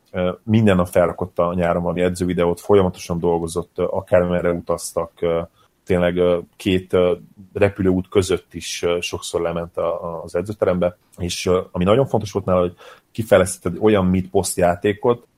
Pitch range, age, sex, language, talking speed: 85-95 Hz, 30-49, male, Hungarian, 120 wpm